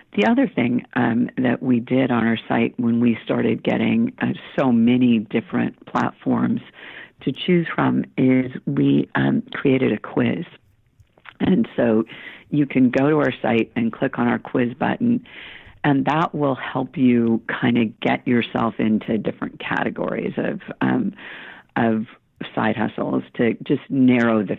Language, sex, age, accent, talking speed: English, female, 50-69, American, 155 wpm